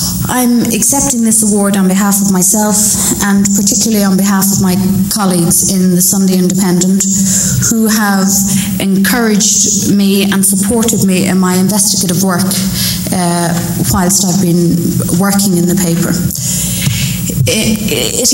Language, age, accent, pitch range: English, 30-49, Irish, 185-205 Hz